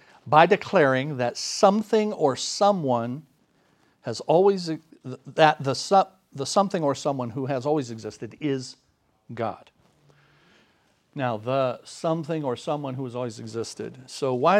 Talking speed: 125 wpm